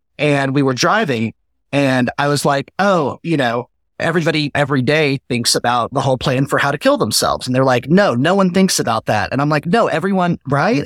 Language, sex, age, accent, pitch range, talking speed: English, male, 30-49, American, 125-155 Hz, 215 wpm